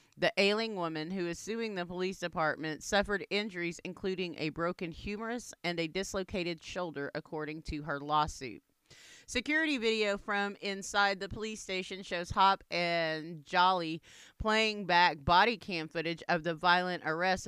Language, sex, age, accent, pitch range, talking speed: English, female, 30-49, American, 160-195 Hz, 150 wpm